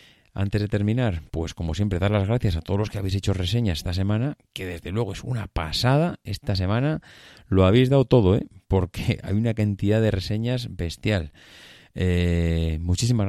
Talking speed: 180 wpm